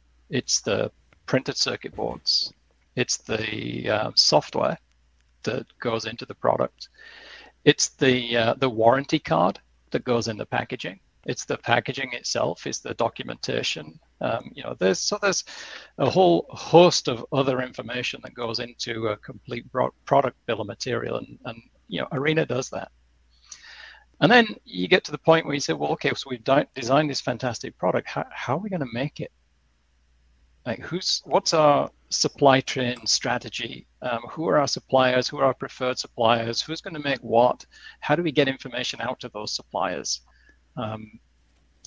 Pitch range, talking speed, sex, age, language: 105-135 Hz, 170 wpm, male, 40-59, English